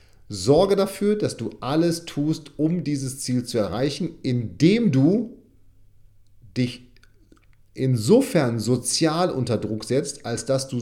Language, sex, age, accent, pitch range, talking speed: German, male, 40-59, German, 105-145 Hz, 120 wpm